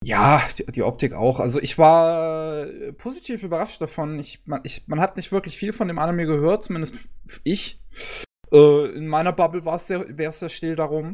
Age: 20-39